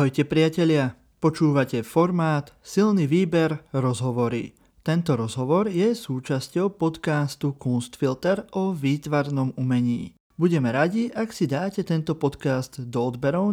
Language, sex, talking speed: Slovak, male, 110 wpm